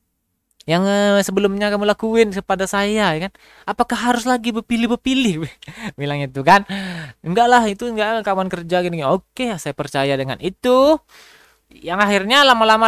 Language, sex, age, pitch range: Indonesian, male, 20-39, 145-230 Hz